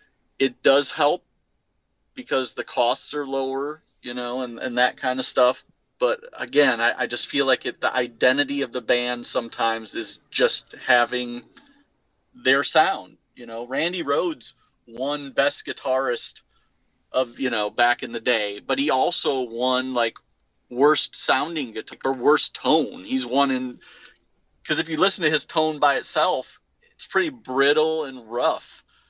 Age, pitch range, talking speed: 30-49, 125-155 Hz, 160 wpm